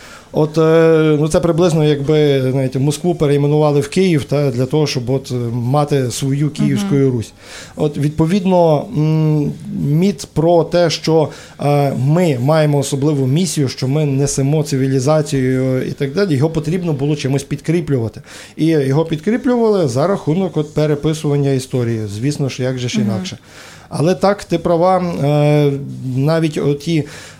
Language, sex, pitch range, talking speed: Ukrainian, male, 135-160 Hz, 130 wpm